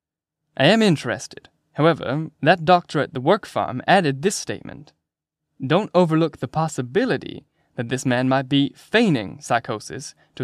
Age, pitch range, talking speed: 10-29, 130-165 Hz, 145 wpm